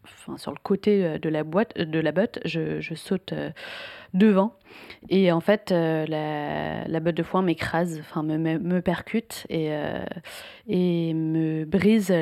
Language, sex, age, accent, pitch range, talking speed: French, female, 30-49, French, 165-205 Hz, 155 wpm